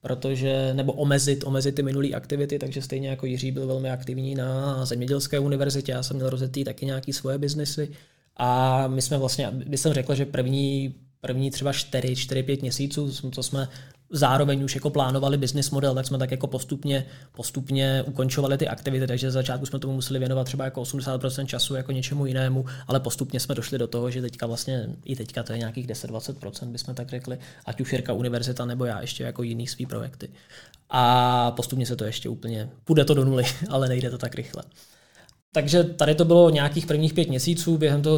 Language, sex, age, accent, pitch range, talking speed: Czech, male, 20-39, native, 130-145 Hz, 190 wpm